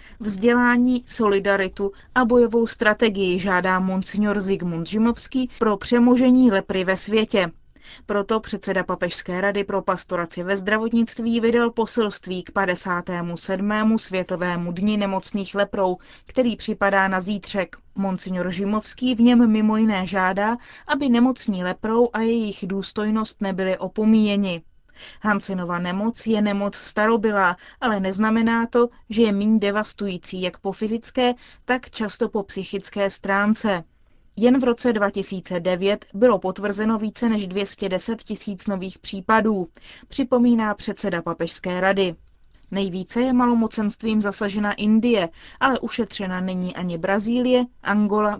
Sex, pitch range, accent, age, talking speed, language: female, 190-230 Hz, native, 30-49, 120 wpm, Czech